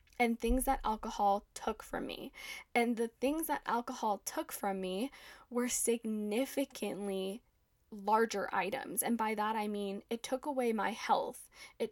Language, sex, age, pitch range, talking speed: English, female, 10-29, 205-255 Hz, 150 wpm